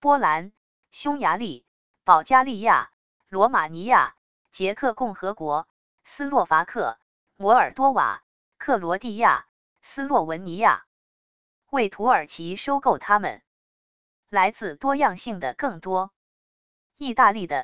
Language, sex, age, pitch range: English, female, 20-39, 175-245 Hz